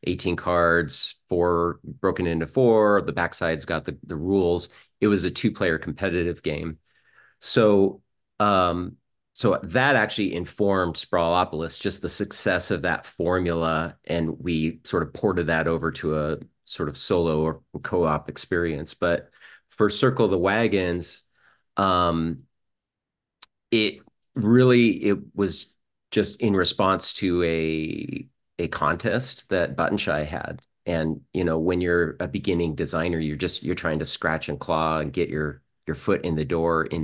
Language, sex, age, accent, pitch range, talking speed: English, male, 30-49, American, 80-90 Hz, 150 wpm